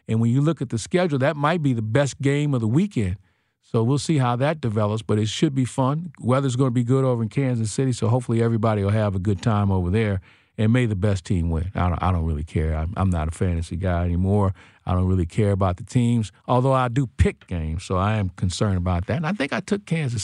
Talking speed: 260 wpm